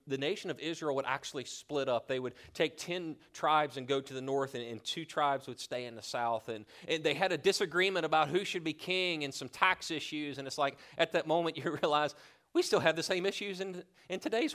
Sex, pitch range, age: male, 130-180 Hz, 30-49